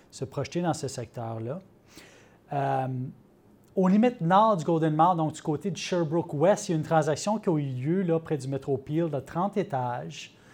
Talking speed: 190 wpm